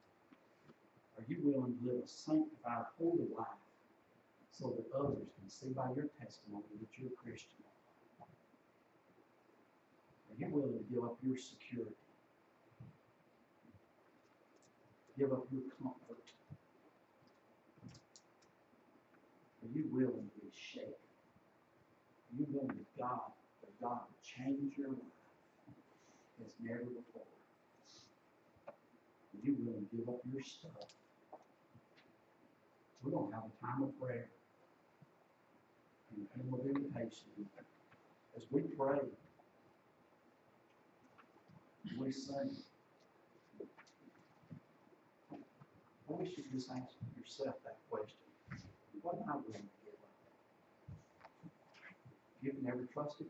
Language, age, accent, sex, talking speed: English, 60-79, American, male, 110 wpm